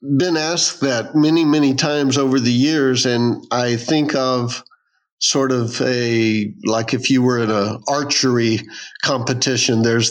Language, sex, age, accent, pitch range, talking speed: English, male, 50-69, American, 120-145 Hz, 150 wpm